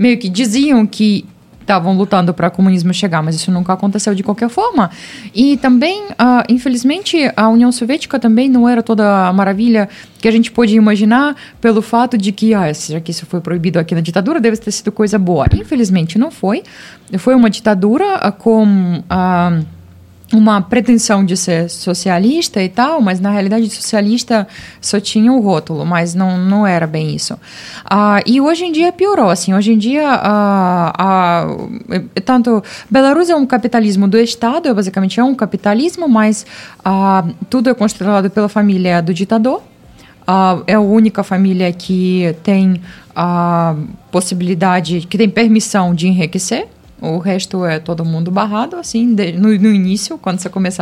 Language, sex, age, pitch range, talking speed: Portuguese, female, 20-39, 185-230 Hz, 170 wpm